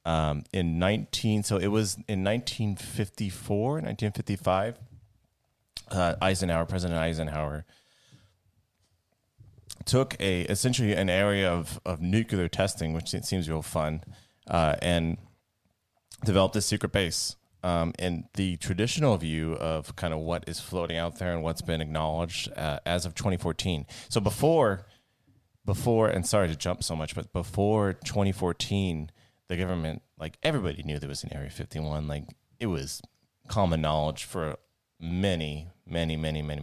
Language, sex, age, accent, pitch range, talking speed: English, male, 30-49, American, 80-105 Hz, 150 wpm